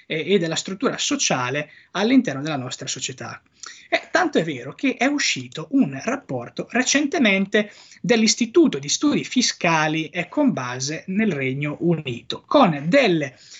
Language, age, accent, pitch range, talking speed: Italian, 20-39, native, 155-250 Hz, 130 wpm